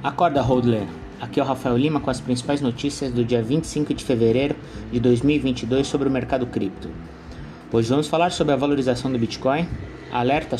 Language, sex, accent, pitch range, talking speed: Portuguese, male, Brazilian, 115-150 Hz, 175 wpm